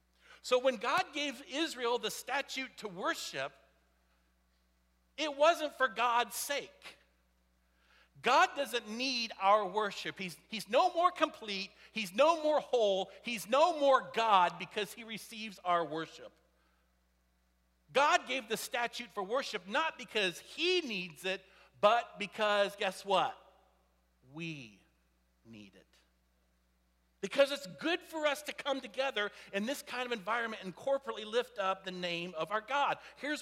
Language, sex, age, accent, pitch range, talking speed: English, male, 50-69, American, 185-255 Hz, 140 wpm